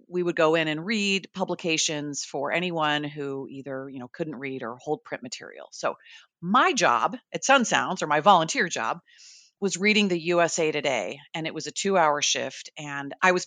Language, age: English, 40-59